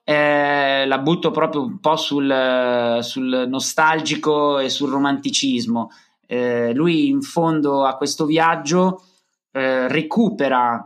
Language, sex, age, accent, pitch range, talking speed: Italian, male, 30-49, native, 125-170 Hz, 115 wpm